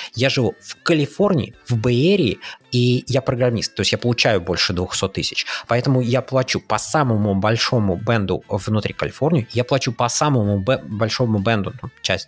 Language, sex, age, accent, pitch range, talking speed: Russian, male, 20-39, native, 100-130 Hz, 160 wpm